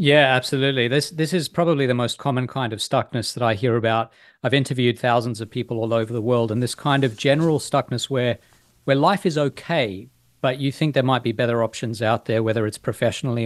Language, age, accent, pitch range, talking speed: English, 40-59, Australian, 115-145 Hz, 220 wpm